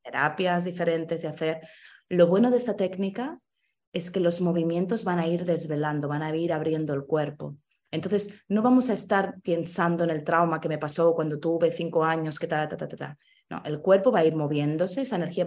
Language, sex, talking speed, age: Spanish, female, 210 wpm, 20-39